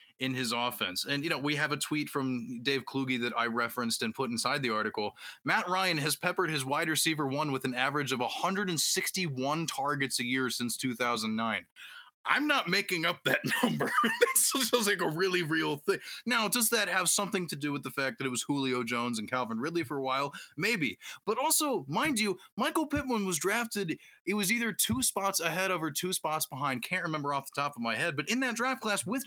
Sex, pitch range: male, 140-205 Hz